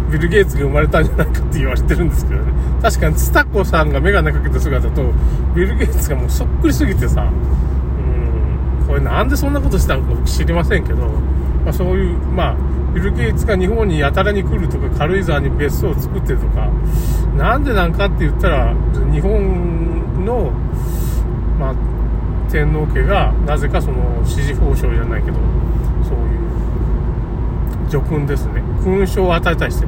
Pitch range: 65-85 Hz